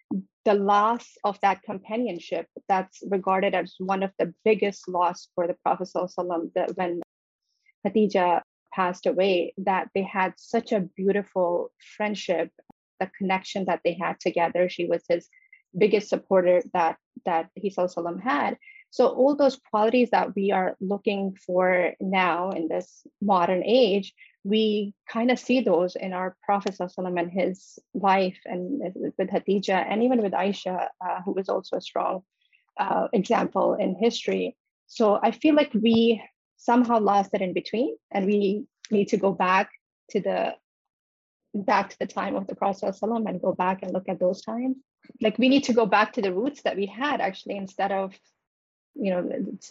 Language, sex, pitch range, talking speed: English, female, 185-220 Hz, 175 wpm